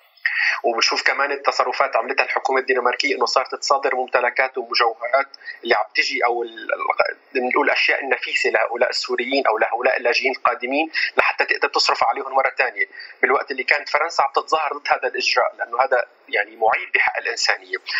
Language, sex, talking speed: Arabic, male, 145 wpm